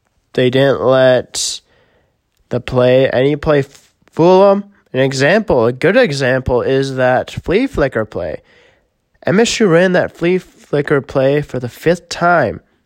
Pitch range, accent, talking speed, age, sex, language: 120-170 Hz, American, 135 wpm, 20-39, male, English